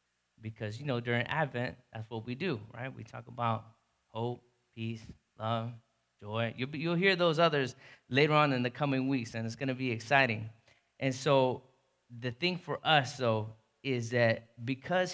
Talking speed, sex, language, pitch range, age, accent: 175 wpm, male, English, 115-150 Hz, 20-39, American